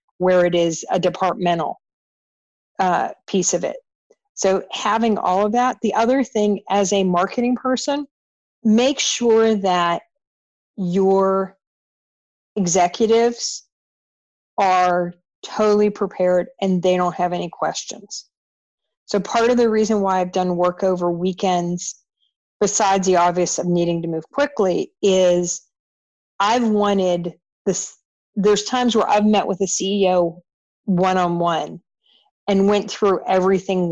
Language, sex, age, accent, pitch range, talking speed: English, female, 40-59, American, 180-215 Hz, 125 wpm